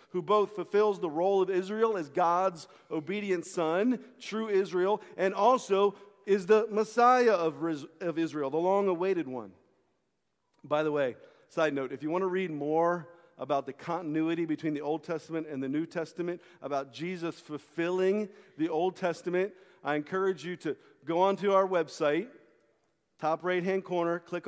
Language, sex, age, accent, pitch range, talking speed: English, male, 40-59, American, 155-190 Hz, 155 wpm